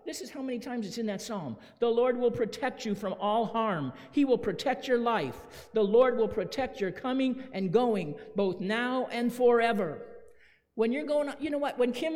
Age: 50-69